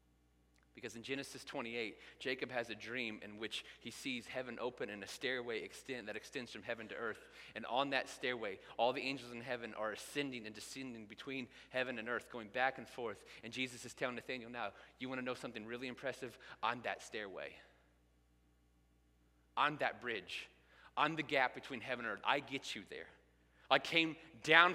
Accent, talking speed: American, 190 wpm